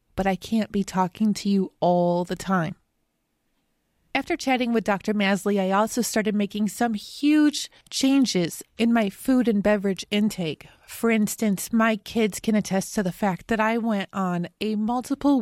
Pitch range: 195-240 Hz